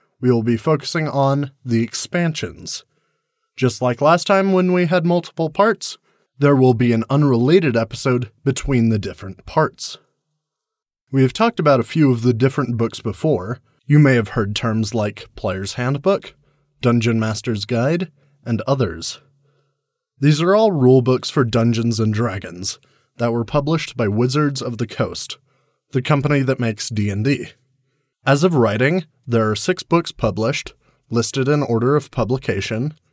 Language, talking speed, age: English, 150 wpm, 20-39